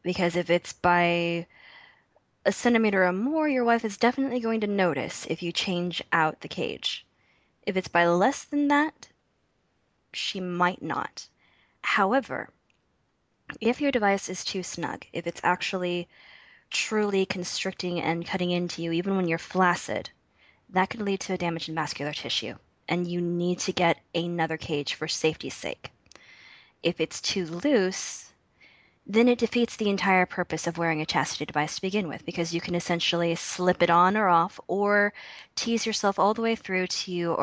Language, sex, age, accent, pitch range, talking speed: English, female, 10-29, American, 170-200 Hz, 170 wpm